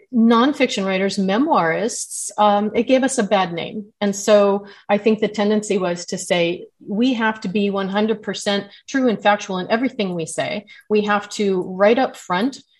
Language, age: English, 30-49